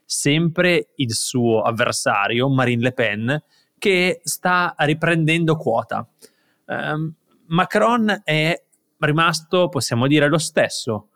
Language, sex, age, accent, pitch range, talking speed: Italian, male, 20-39, native, 120-150 Hz, 95 wpm